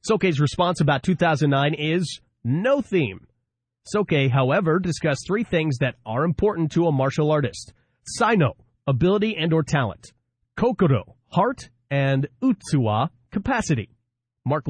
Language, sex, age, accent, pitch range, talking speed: English, male, 30-49, American, 130-180 Hz, 120 wpm